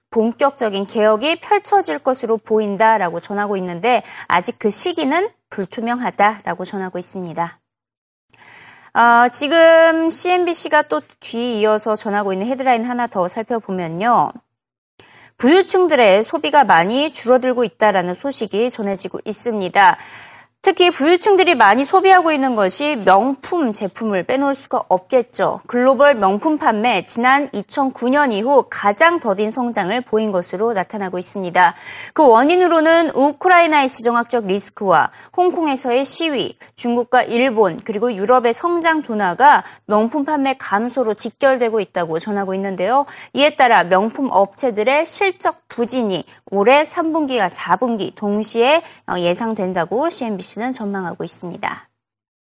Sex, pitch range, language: female, 200-295 Hz, Korean